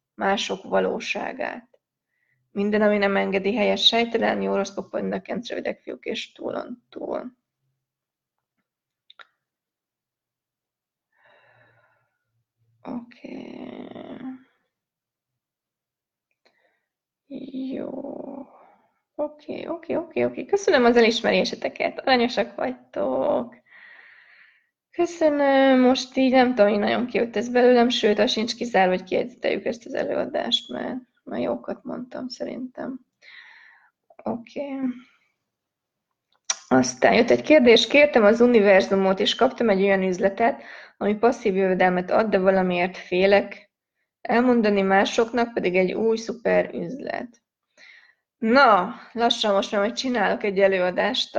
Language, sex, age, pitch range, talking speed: Hungarian, female, 20-39, 200-275 Hz, 105 wpm